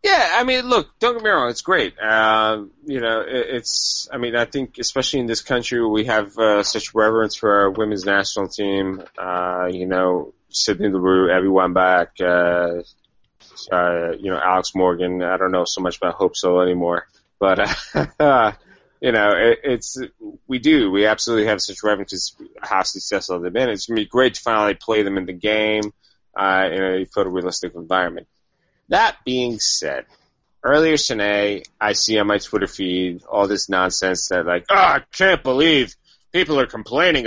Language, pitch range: English, 95-125 Hz